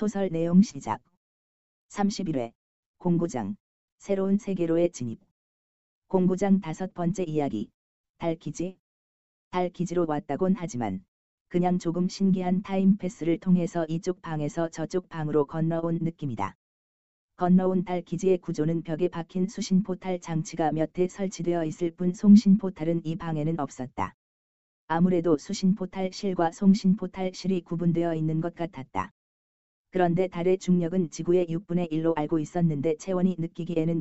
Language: Korean